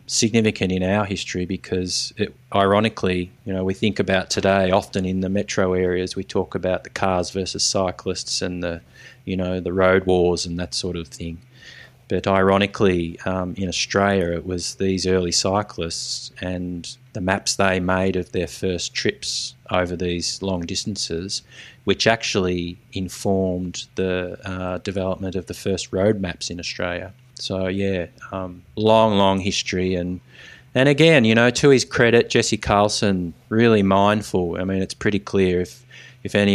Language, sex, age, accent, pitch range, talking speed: English, male, 20-39, Australian, 90-110 Hz, 165 wpm